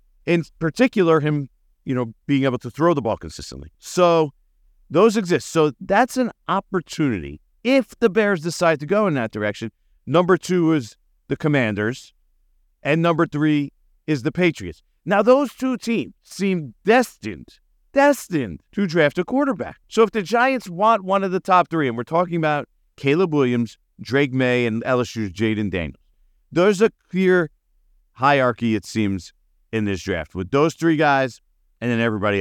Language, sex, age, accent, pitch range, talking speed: English, male, 50-69, American, 115-180 Hz, 165 wpm